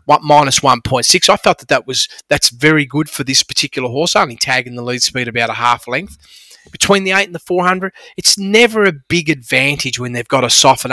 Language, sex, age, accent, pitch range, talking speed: English, male, 30-49, Australian, 130-180 Hz, 225 wpm